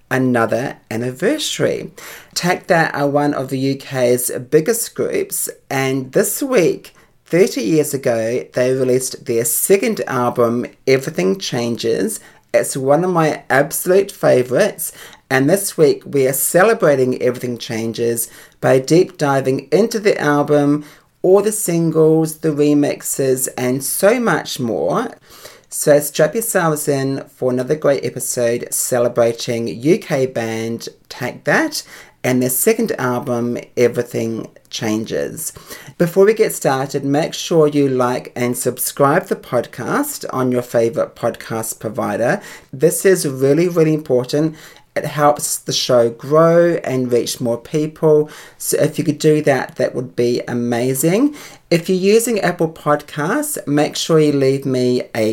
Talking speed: 135 wpm